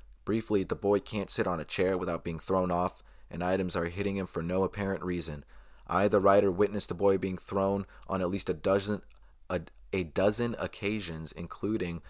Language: English